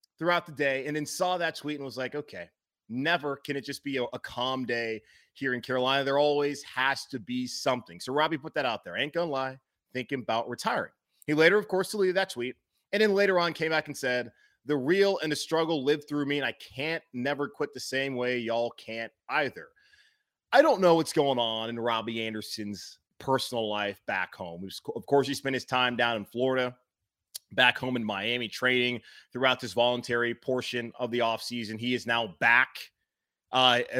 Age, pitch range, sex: 30-49, 120-155 Hz, male